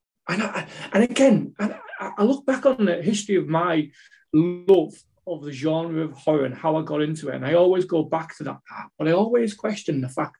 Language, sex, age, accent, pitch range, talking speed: English, male, 30-49, British, 145-205 Hz, 215 wpm